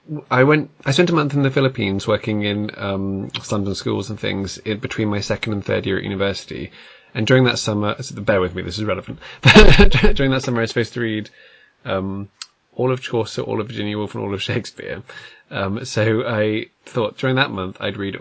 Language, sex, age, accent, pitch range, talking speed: English, male, 20-39, British, 100-125 Hz, 210 wpm